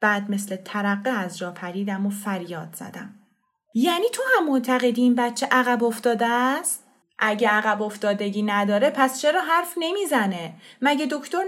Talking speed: 150 wpm